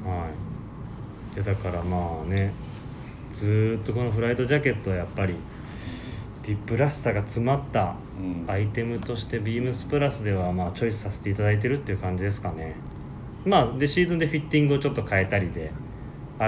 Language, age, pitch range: Japanese, 20-39, 100-145 Hz